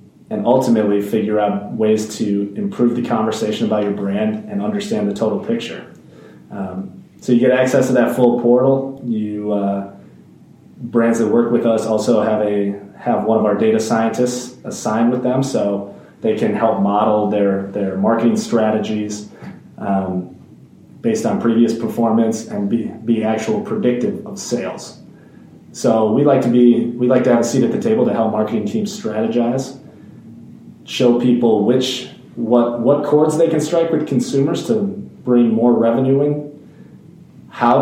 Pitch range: 110-140 Hz